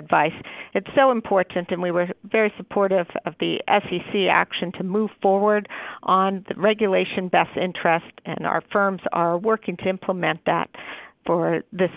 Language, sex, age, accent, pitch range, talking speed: English, female, 50-69, American, 185-225 Hz, 155 wpm